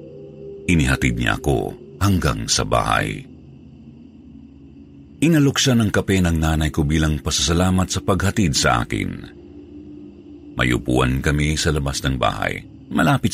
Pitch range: 70-95 Hz